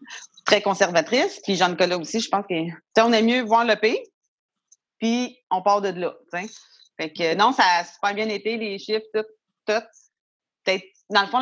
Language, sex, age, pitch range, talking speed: French, female, 30-49, 180-230 Hz, 185 wpm